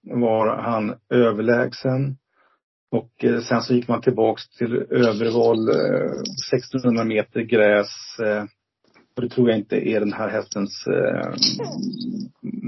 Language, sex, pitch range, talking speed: Swedish, male, 115-130 Hz, 130 wpm